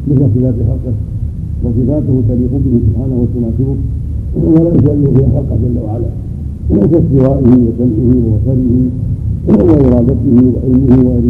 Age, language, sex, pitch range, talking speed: 70-89, Arabic, male, 100-125 Hz, 115 wpm